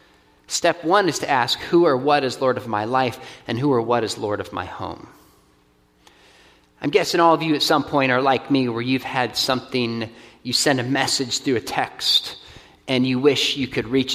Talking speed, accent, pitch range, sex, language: 210 wpm, American, 130-170 Hz, male, English